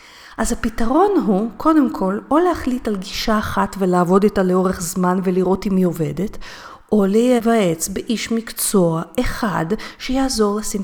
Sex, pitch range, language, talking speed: female, 185-260 Hz, Hebrew, 140 wpm